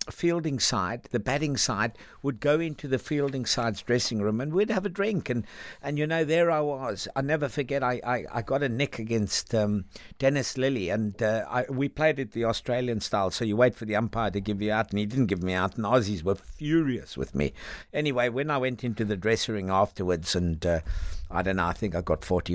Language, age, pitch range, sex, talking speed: English, 60-79, 95-130 Hz, male, 235 wpm